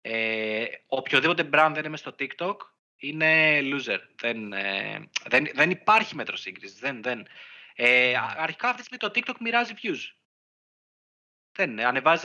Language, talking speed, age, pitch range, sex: Greek, 145 wpm, 30-49, 130-180 Hz, male